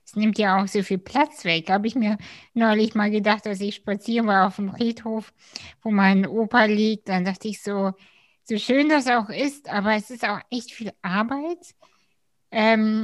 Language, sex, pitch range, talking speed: German, female, 200-225 Hz, 195 wpm